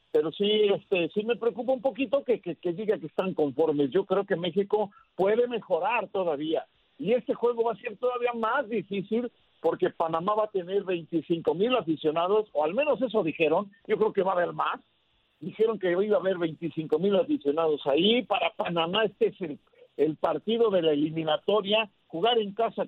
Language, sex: Spanish, male